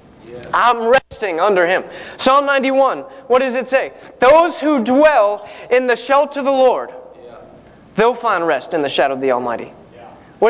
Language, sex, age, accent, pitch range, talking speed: English, male, 20-39, American, 190-270 Hz, 165 wpm